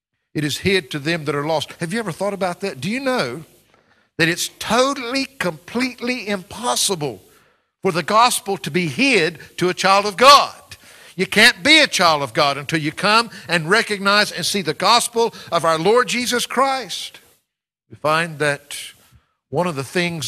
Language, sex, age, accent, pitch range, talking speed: English, male, 60-79, American, 165-240 Hz, 180 wpm